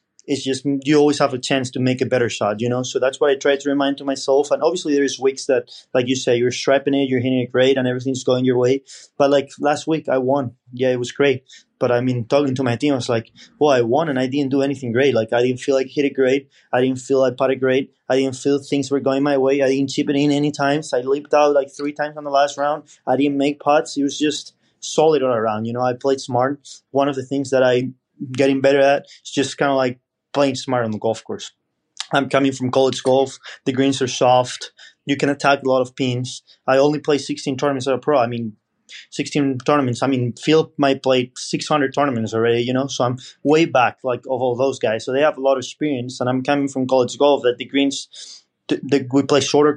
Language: English